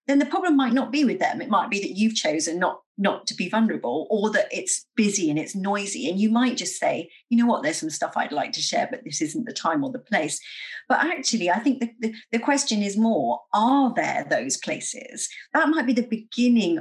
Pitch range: 205-280 Hz